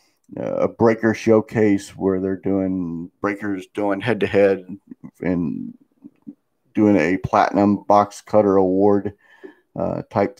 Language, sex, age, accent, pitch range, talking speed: English, male, 50-69, American, 95-115 Hz, 110 wpm